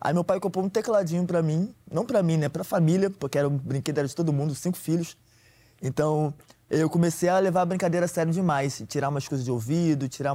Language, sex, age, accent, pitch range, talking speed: Portuguese, male, 20-39, Brazilian, 130-165 Hz, 225 wpm